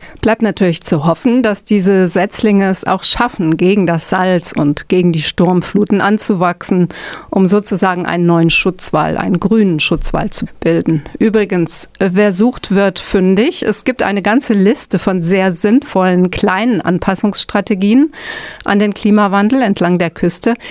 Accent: German